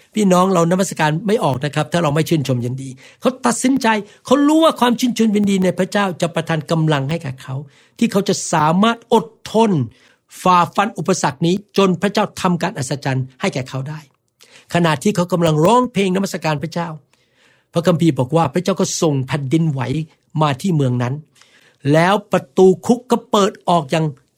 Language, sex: Thai, male